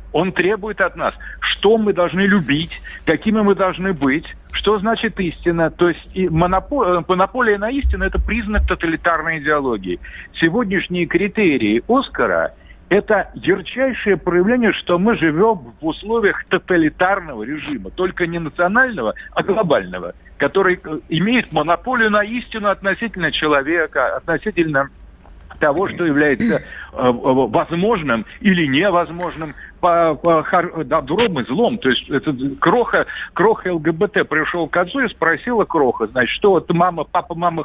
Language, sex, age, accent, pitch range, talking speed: Russian, male, 60-79, native, 155-210 Hz, 125 wpm